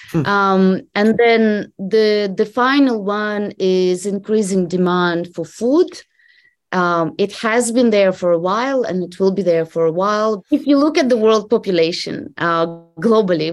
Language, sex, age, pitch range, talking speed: English, female, 20-39, 170-215 Hz, 165 wpm